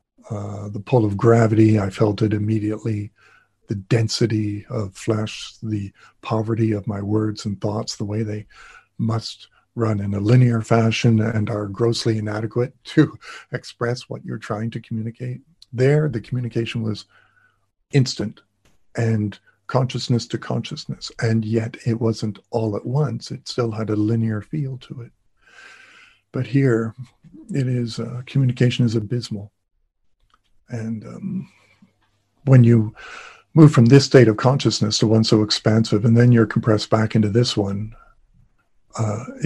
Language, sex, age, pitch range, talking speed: English, male, 50-69, 105-120 Hz, 145 wpm